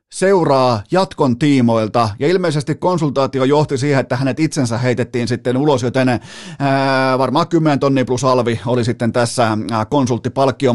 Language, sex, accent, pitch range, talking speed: Finnish, male, native, 125-160 Hz, 135 wpm